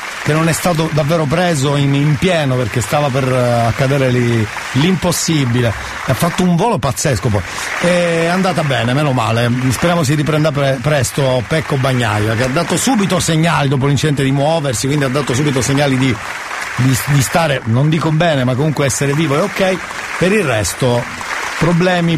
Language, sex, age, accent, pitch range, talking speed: Italian, male, 40-59, native, 125-165 Hz, 175 wpm